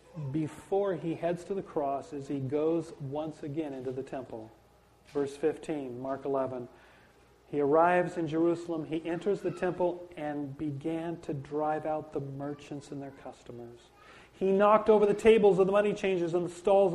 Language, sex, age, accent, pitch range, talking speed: English, male, 40-59, American, 125-170 Hz, 170 wpm